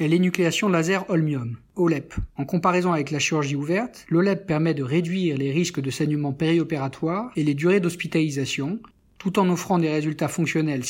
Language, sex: French, male